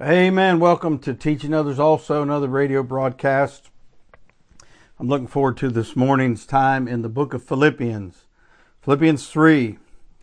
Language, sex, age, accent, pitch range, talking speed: English, male, 60-79, American, 125-155 Hz, 140 wpm